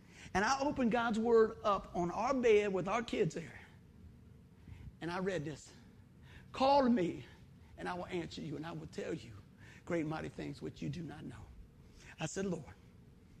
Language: English